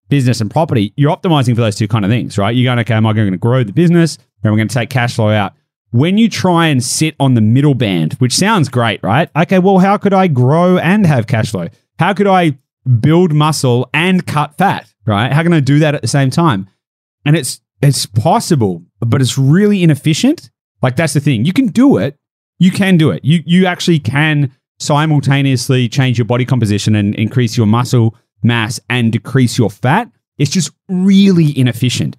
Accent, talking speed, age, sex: Australian, 215 wpm, 30-49, male